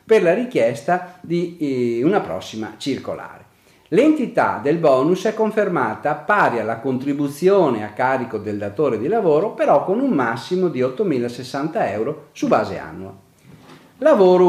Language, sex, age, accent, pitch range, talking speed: Italian, male, 40-59, native, 115-175 Hz, 135 wpm